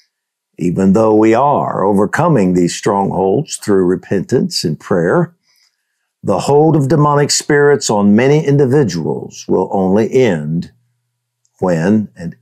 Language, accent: English, American